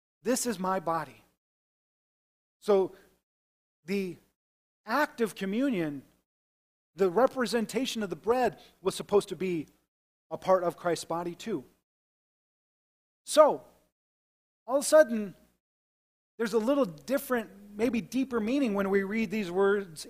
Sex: male